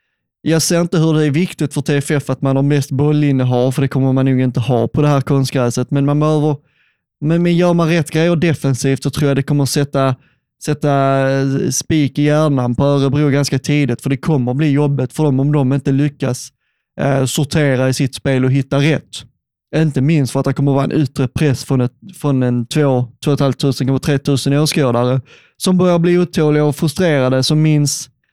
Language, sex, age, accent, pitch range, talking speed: Swedish, male, 20-39, native, 135-155 Hz, 210 wpm